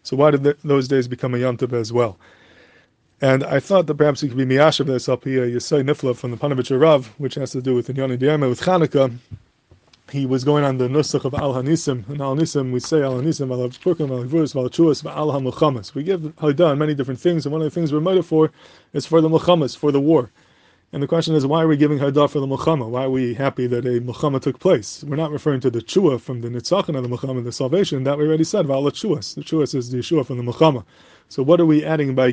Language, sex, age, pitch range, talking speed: English, male, 20-39, 125-150 Hz, 250 wpm